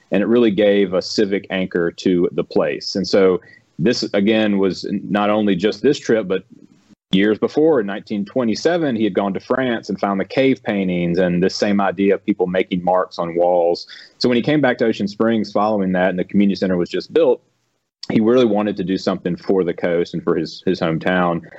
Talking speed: 210 wpm